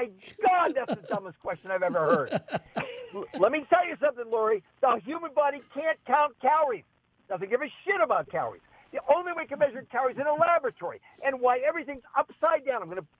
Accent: American